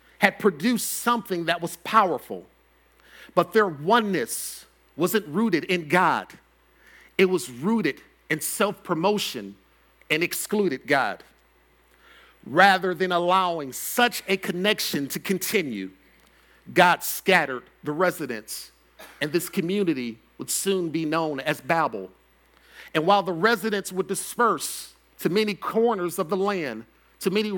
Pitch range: 155-200 Hz